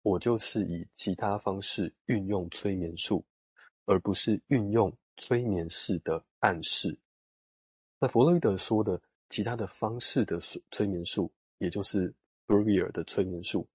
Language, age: Chinese, 20-39